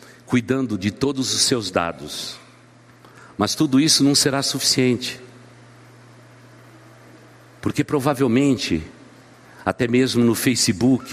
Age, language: 60-79, Portuguese